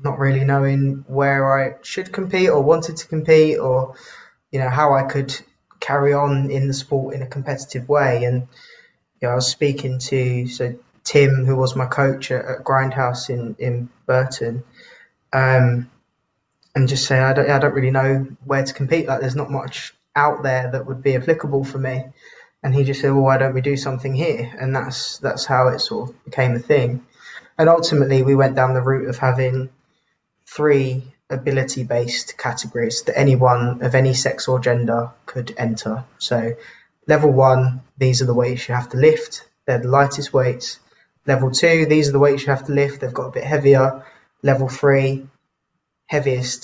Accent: British